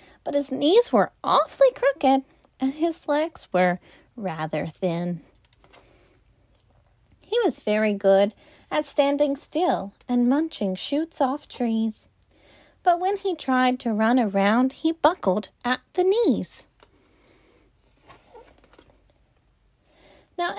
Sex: female